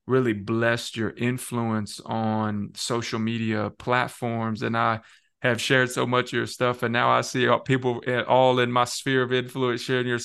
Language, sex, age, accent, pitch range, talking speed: English, male, 20-39, American, 110-125 Hz, 185 wpm